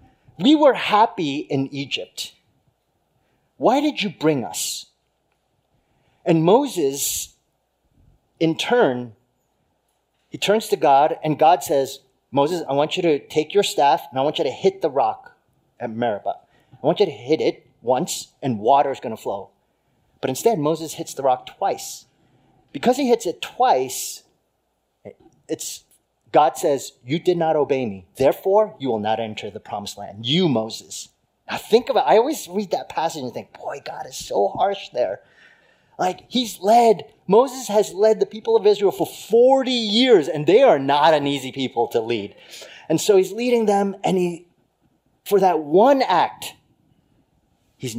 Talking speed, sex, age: 165 wpm, male, 30-49